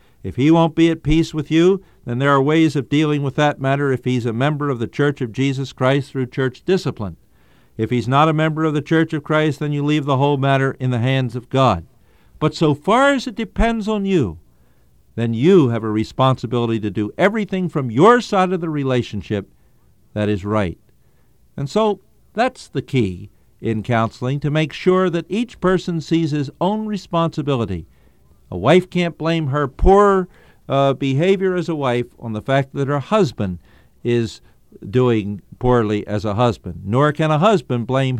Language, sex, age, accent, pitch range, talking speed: English, male, 50-69, American, 110-160 Hz, 190 wpm